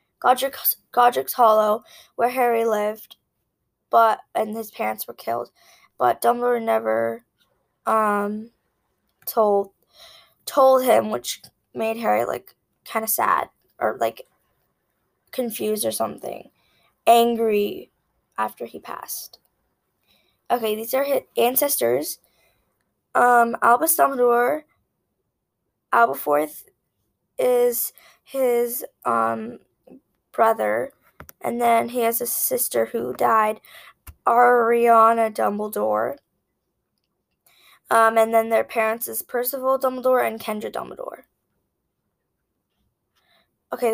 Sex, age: female, 10-29